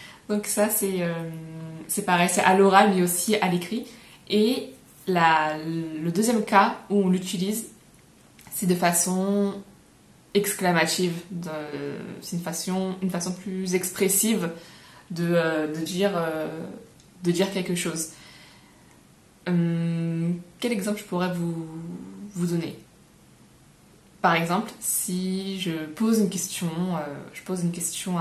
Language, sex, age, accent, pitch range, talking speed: French, female, 20-39, French, 170-200 Hz, 125 wpm